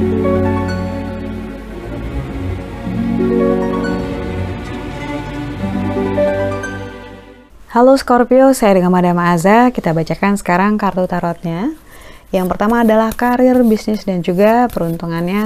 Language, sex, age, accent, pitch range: Indonesian, female, 20-39, native, 170-215 Hz